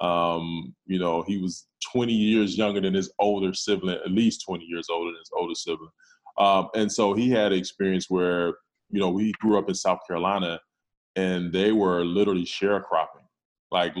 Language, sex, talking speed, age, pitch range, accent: English, male, 185 wpm, 20-39, 90-100 Hz, American